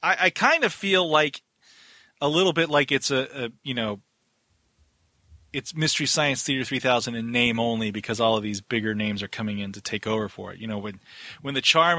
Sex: male